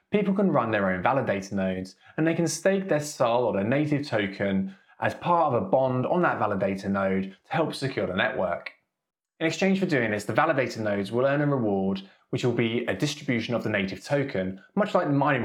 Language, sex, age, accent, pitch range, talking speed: English, male, 20-39, British, 105-160 Hz, 215 wpm